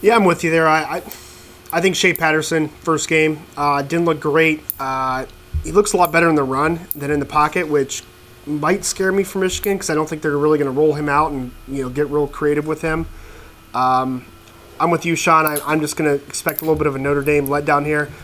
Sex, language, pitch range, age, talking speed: male, English, 135-160 Hz, 30-49, 245 wpm